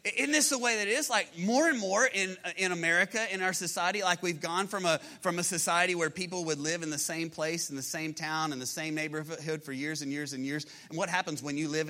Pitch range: 145-180 Hz